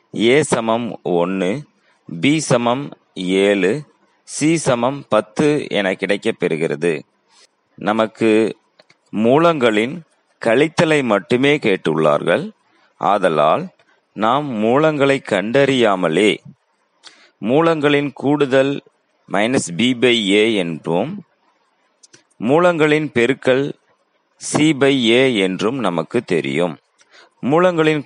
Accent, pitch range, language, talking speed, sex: native, 105-145 Hz, Tamil, 70 wpm, male